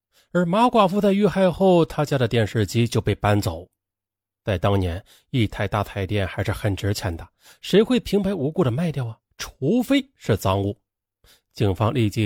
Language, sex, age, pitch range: Chinese, male, 30-49, 100-170 Hz